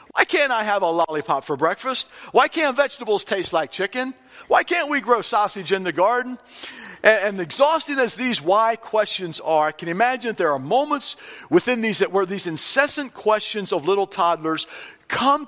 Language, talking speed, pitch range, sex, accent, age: English, 180 wpm, 180-260 Hz, male, American, 50-69